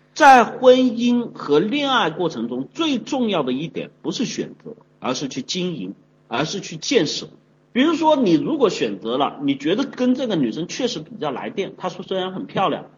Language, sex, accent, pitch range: Chinese, male, native, 180-270 Hz